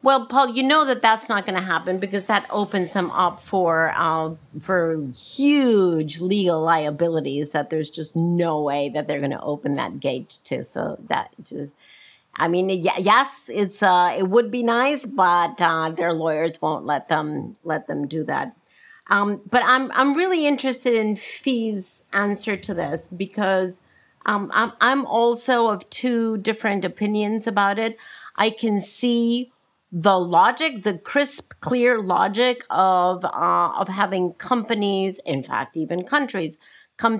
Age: 50-69